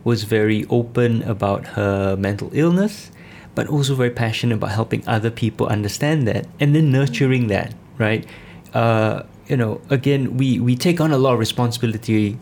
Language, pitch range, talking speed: English, 110-130 Hz, 165 wpm